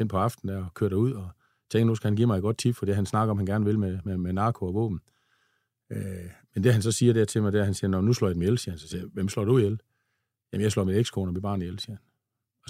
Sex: male